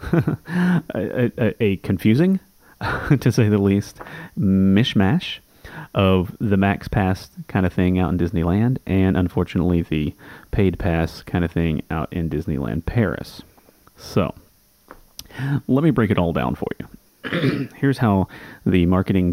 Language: English